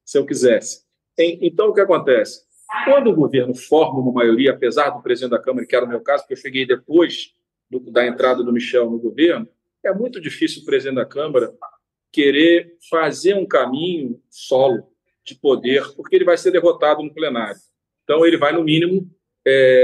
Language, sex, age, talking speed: Portuguese, male, 40-59, 185 wpm